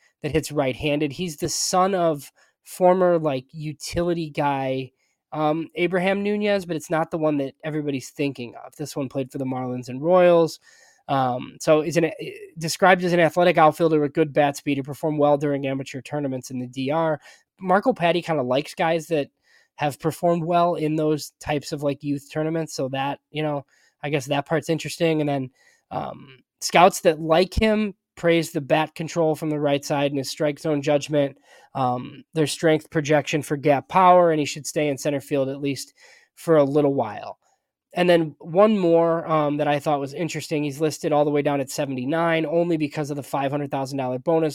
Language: English